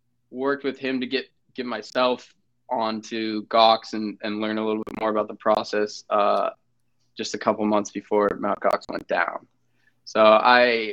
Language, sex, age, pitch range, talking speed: English, male, 20-39, 110-125 Hz, 175 wpm